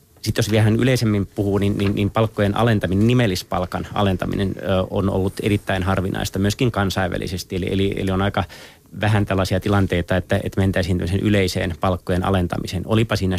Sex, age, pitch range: male, 30-49, 90-100 Hz